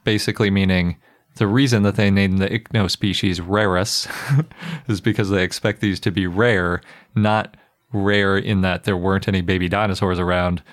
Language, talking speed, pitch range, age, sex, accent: English, 160 wpm, 95-110 Hz, 30-49, male, American